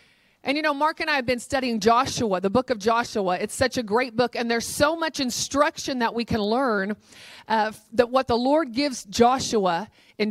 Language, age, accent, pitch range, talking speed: English, 40-59, American, 195-255 Hz, 210 wpm